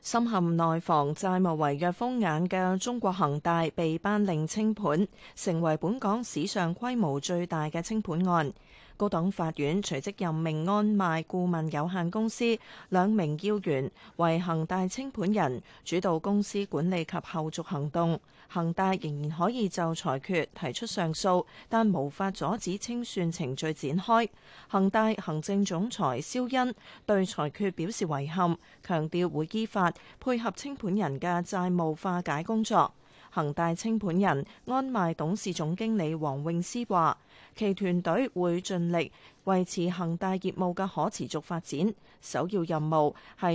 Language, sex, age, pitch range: Chinese, female, 30-49, 160-200 Hz